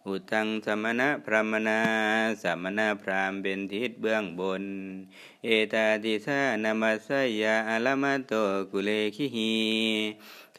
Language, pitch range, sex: Thai, 95-110 Hz, male